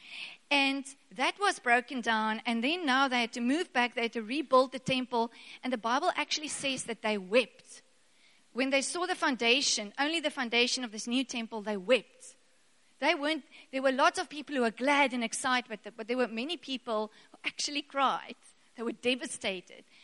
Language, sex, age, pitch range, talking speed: English, female, 30-49, 235-295 Hz, 200 wpm